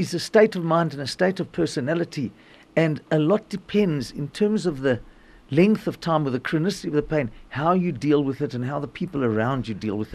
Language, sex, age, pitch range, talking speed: English, male, 50-69, 120-170 Hz, 230 wpm